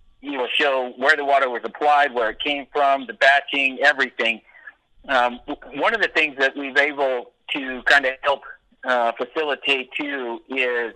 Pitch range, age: 125-145 Hz, 50-69